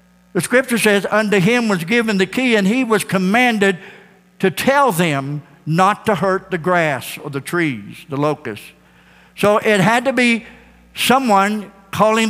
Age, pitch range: 60-79, 145-205 Hz